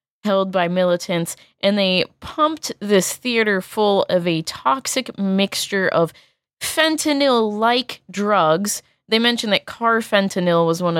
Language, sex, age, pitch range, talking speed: English, female, 20-39, 170-225 Hz, 125 wpm